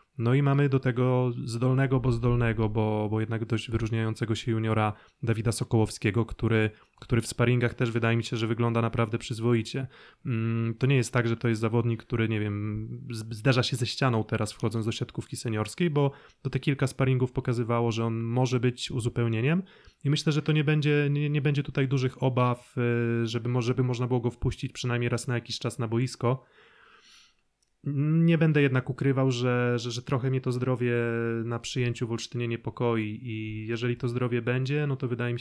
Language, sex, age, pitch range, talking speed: Polish, male, 20-39, 115-125 Hz, 185 wpm